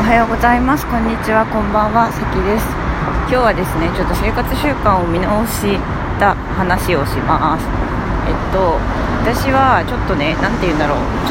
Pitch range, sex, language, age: 145-215 Hz, female, Japanese, 20-39